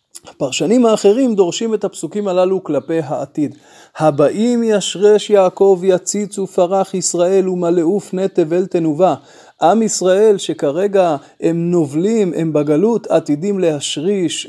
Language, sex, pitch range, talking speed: Hebrew, male, 165-210 Hz, 110 wpm